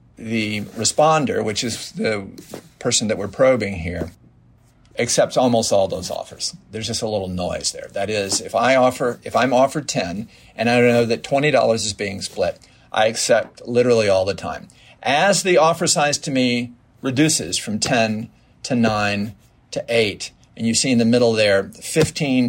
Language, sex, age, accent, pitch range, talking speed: English, male, 50-69, American, 95-130 Hz, 175 wpm